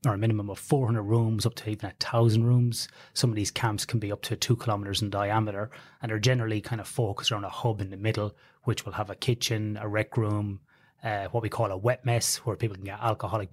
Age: 30-49